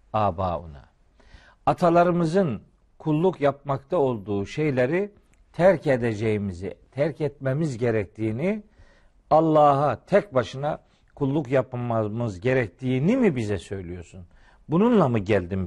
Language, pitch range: Turkish, 110-160 Hz